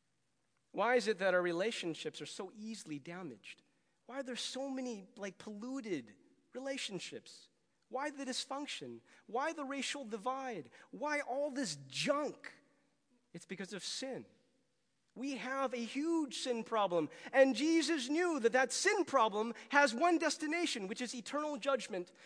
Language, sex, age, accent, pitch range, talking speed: English, male, 30-49, American, 175-275 Hz, 145 wpm